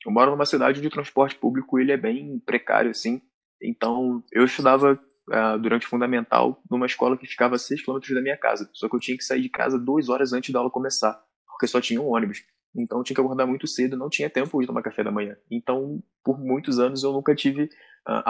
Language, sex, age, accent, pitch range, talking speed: Portuguese, male, 20-39, Brazilian, 110-135 Hz, 235 wpm